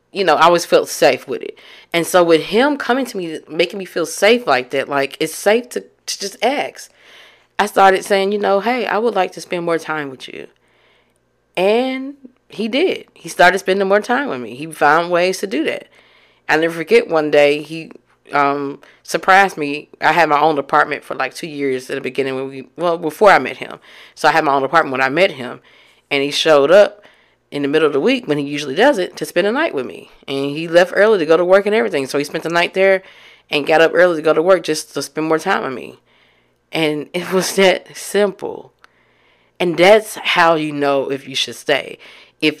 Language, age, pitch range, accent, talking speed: English, 30-49, 140-190 Hz, American, 230 wpm